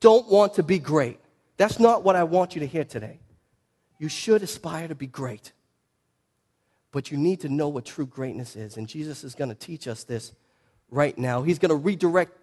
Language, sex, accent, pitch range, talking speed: English, male, American, 130-180 Hz, 210 wpm